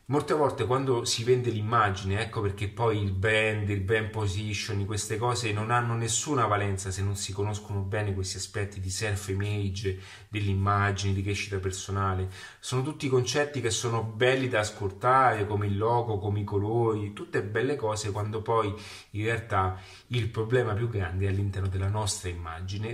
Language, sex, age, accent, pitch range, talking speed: Italian, male, 30-49, native, 100-120 Hz, 165 wpm